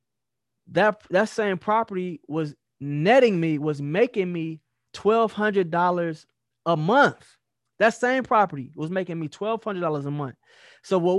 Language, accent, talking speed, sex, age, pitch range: English, American, 130 wpm, male, 20-39, 145-195 Hz